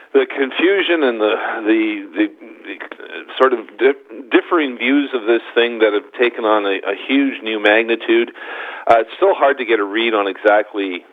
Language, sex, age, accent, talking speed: English, male, 50-69, American, 185 wpm